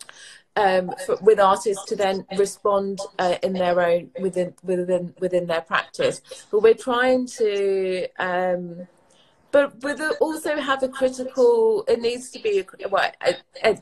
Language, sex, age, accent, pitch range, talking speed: English, female, 30-49, British, 190-260 Hz, 155 wpm